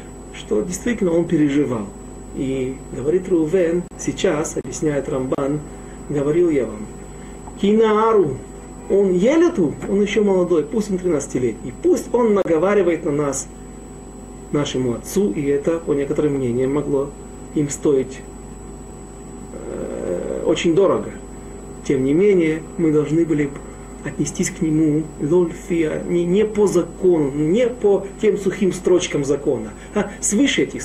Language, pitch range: Russian, 150-205 Hz